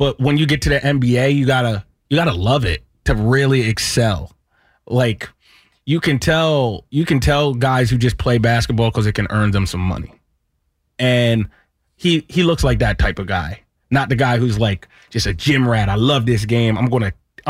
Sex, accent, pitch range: male, American, 115-145 Hz